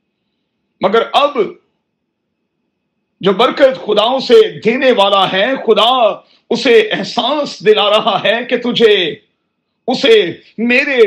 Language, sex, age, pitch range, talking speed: Urdu, male, 50-69, 195-240 Hz, 105 wpm